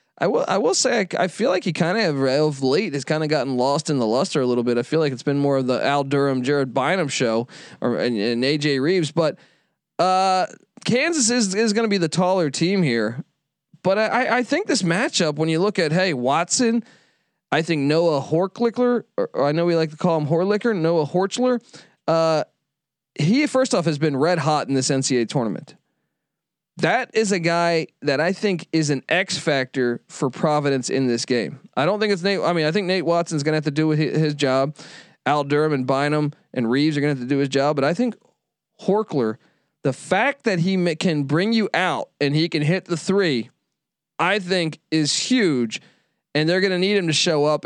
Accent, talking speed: American, 220 wpm